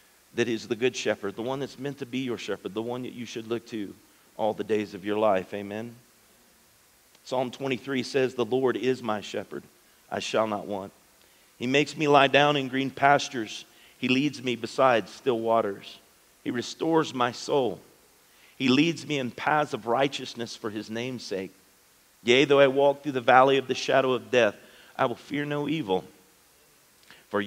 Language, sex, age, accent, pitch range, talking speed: English, male, 40-59, American, 110-135 Hz, 185 wpm